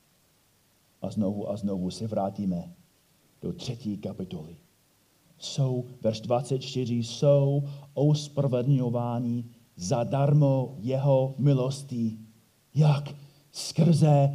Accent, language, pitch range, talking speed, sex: native, Czech, 130-175 Hz, 80 wpm, male